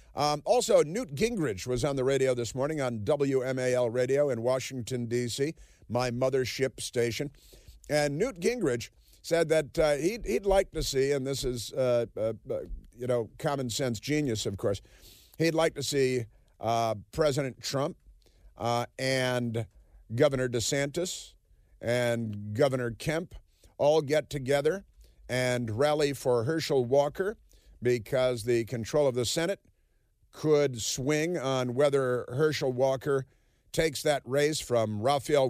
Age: 50-69